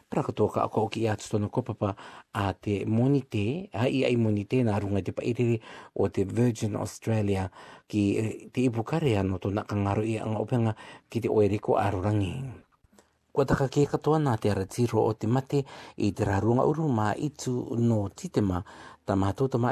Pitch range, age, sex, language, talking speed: 105-130 Hz, 50-69, male, English, 150 wpm